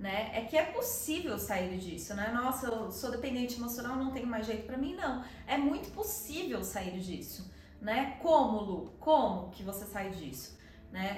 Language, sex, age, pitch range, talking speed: Portuguese, female, 20-39, 220-275 Hz, 185 wpm